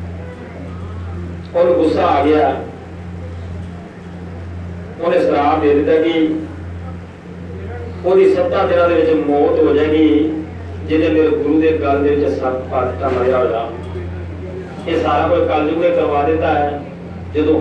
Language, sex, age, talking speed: Punjabi, male, 40-59, 135 wpm